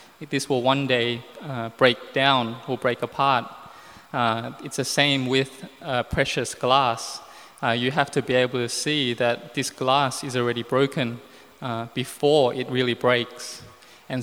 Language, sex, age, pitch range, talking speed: English, male, 20-39, 120-140 Hz, 160 wpm